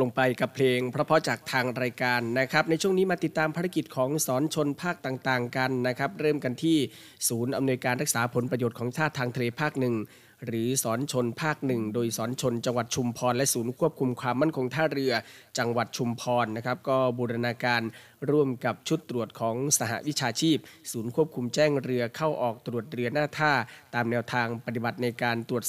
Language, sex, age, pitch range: Thai, male, 20-39, 120-140 Hz